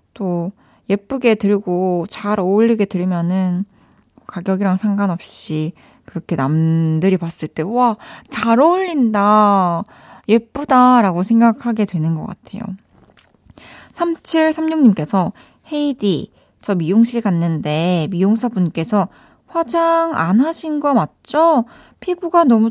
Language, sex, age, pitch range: Korean, female, 20-39, 190-255 Hz